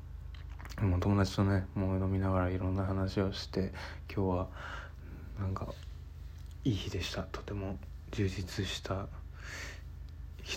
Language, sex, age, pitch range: Japanese, male, 20-39, 80-100 Hz